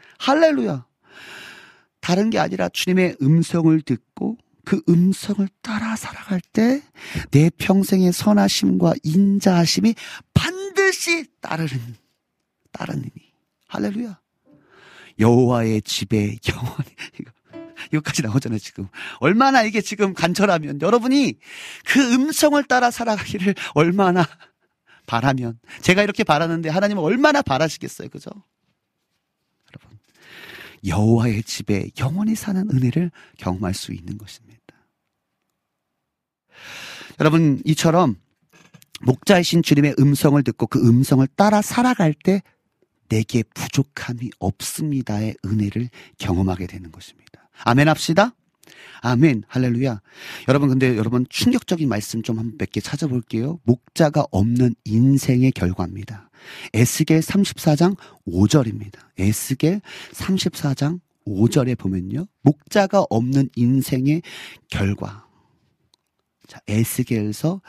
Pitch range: 115-190 Hz